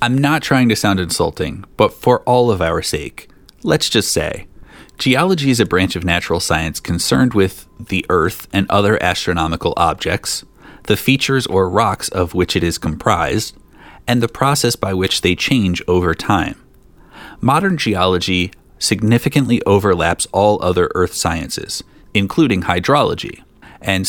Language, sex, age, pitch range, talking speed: English, male, 30-49, 90-120 Hz, 145 wpm